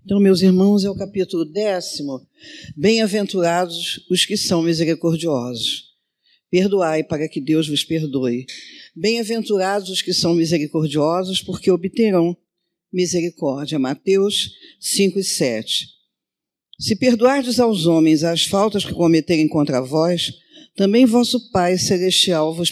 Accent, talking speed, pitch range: Brazilian, 120 wpm, 160-210 Hz